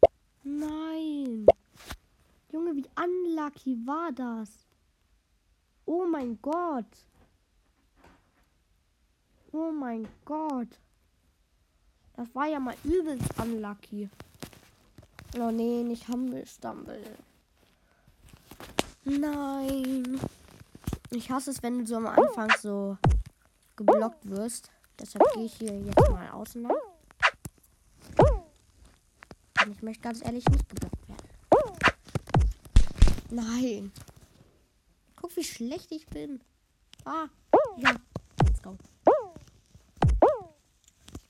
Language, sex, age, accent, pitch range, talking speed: German, female, 20-39, German, 195-275 Hz, 85 wpm